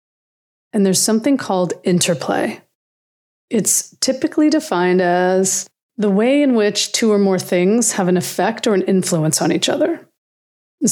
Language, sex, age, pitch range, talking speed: English, female, 30-49, 180-220 Hz, 150 wpm